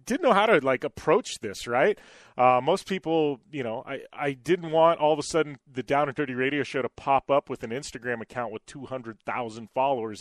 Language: English